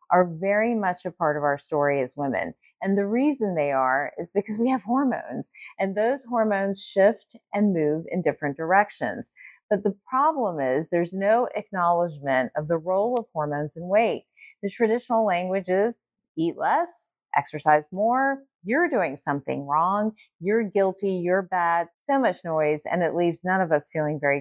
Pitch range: 155-225 Hz